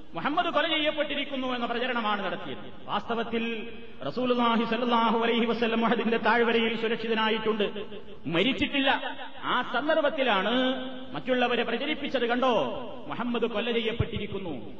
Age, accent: 30-49, native